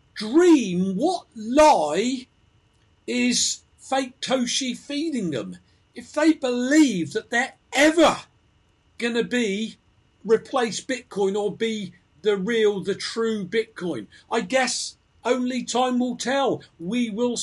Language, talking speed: English, 115 wpm